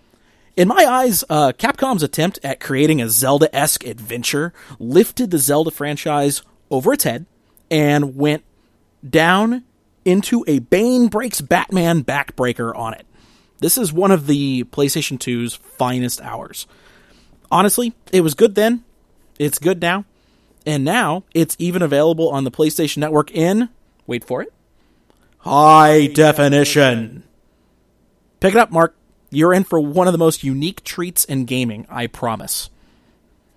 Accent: American